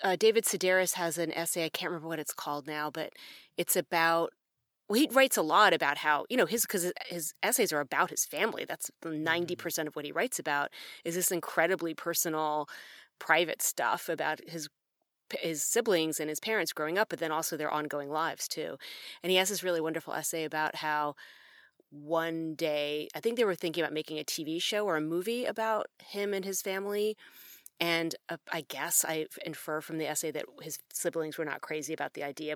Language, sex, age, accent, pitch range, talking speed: English, female, 30-49, American, 155-195 Hz, 200 wpm